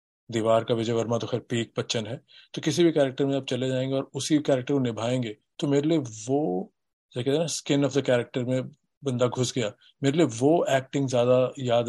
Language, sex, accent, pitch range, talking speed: Hindi, male, native, 115-130 Hz, 220 wpm